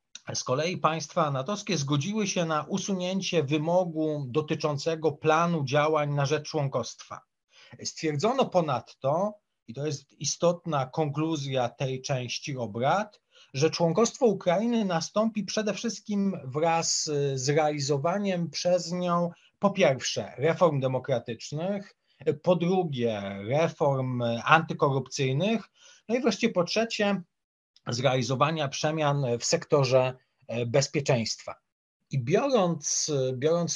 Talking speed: 100 wpm